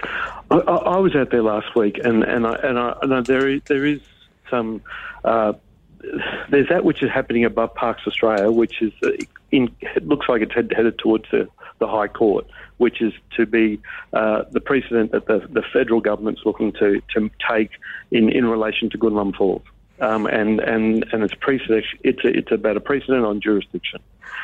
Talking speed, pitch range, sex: 175 wpm, 105-120 Hz, male